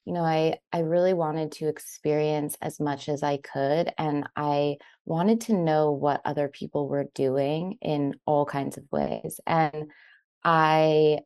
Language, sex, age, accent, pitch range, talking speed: English, female, 20-39, American, 145-165 Hz, 160 wpm